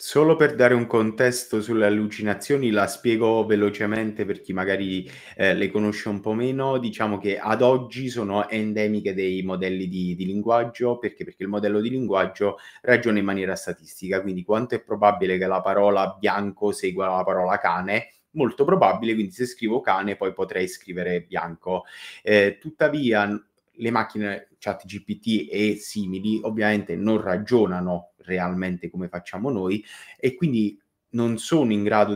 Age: 30-49